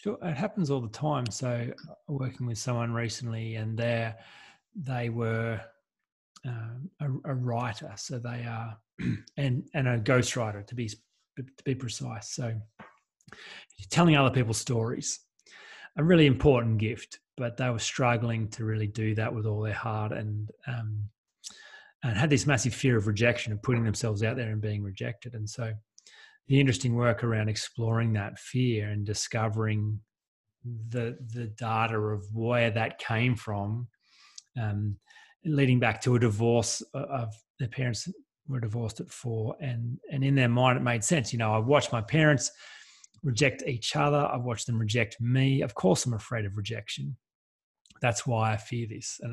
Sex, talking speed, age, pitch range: male, 165 wpm, 30-49, 110-130 Hz